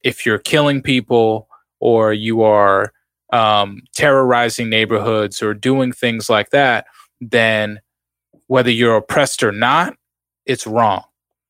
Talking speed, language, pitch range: 120 wpm, English, 110-125 Hz